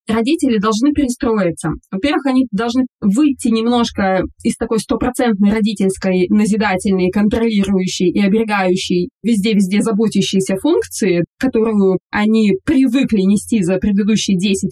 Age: 20-39